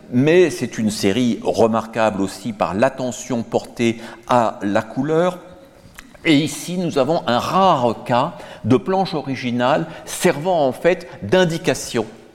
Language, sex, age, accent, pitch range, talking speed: French, male, 60-79, French, 110-145 Hz, 125 wpm